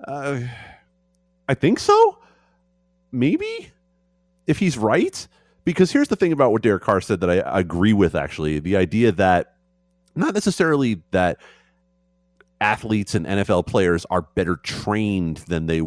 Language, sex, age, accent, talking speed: English, male, 30-49, American, 145 wpm